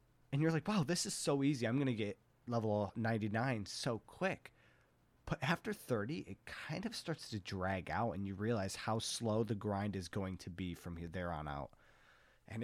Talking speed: 200 wpm